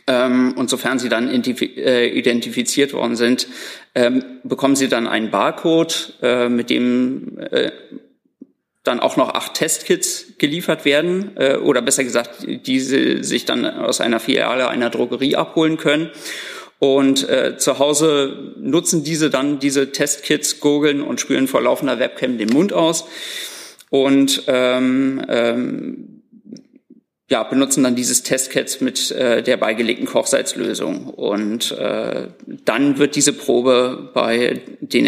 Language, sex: German, male